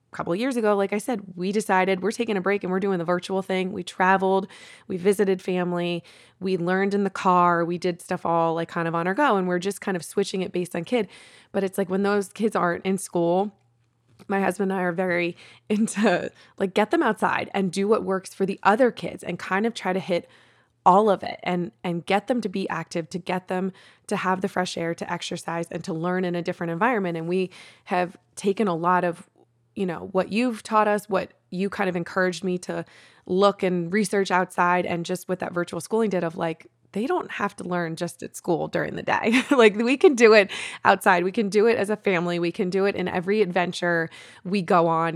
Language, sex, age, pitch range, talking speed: English, female, 20-39, 175-200 Hz, 235 wpm